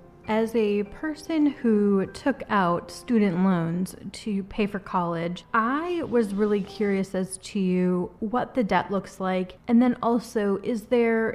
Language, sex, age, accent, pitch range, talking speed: English, female, 30-49, American, 190-230 Hz, 150 wpm